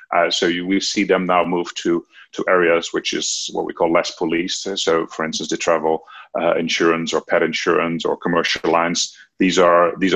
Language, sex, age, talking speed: English, male, 40-59, 200 wpm